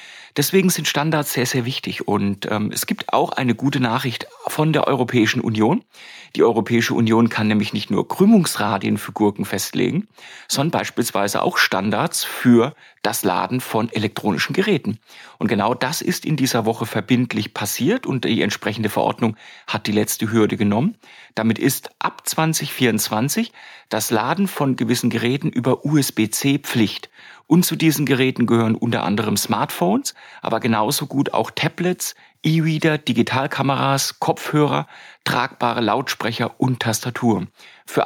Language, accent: German, German